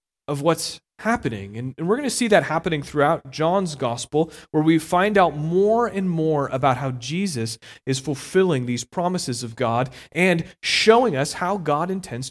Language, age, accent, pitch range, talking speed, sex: English, 30-49, American, 130-175 Hz, 170 wpm, male